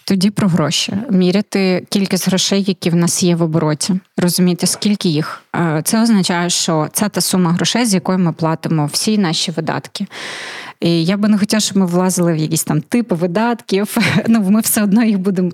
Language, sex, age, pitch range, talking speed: Ukrainian, female, 20-39, 175-210 Hz, 185 wpm